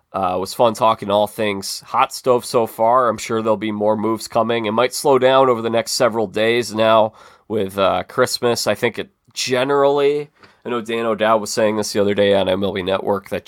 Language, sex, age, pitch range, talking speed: English, male, 30-49, 100-120 Hz, 215 wpm